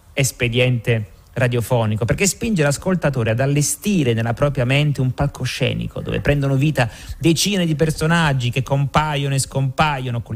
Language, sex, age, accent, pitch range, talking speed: Italian, male, 30-49, native, 115-145 Hz, 135 wpm